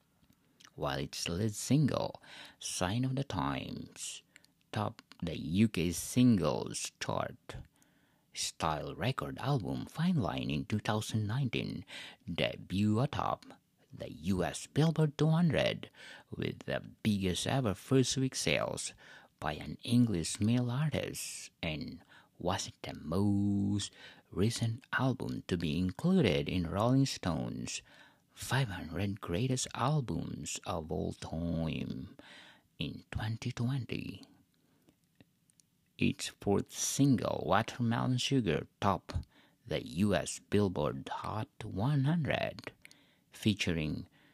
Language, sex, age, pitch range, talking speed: English, male, 50-69, 100-135 Hz, 95 wpm